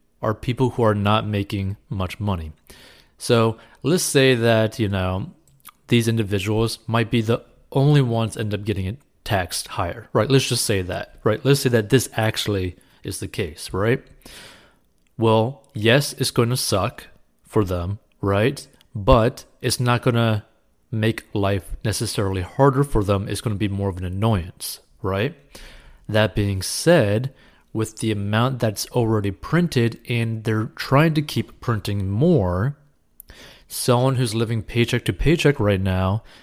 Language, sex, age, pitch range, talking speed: English, male, 30-49, 100-120 Hz, 155 wpm